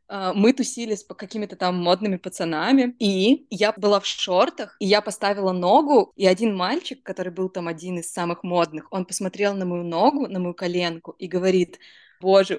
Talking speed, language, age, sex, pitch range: 175 wpm, Russian, 20-39, female, 180-225 Hz